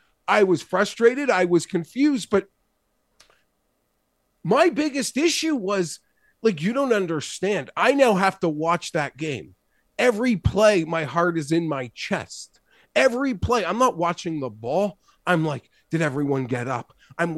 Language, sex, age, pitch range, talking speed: English, male, 30-49, 170-225 Hz, 150 wpm